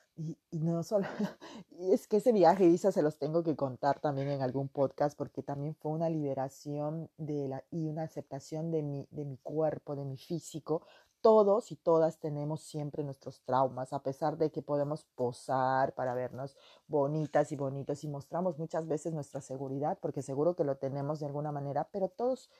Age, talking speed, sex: 30-49, 190 wpm, female